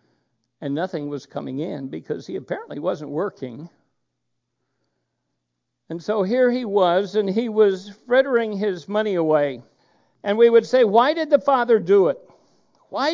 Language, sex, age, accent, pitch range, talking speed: English, male, 60-79, American, 135-200 Hz, 150 wpm